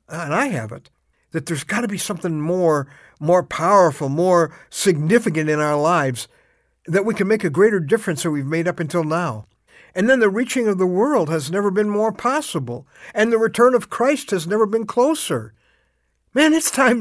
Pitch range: 155-230 Hz